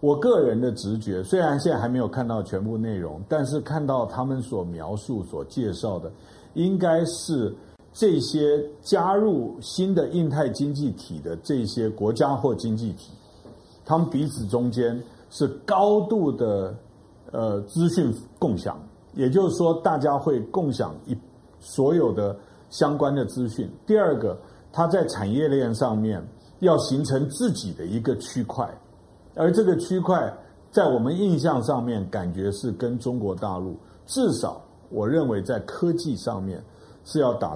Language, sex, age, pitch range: Chinese, male, 50-69, 105-155 Hz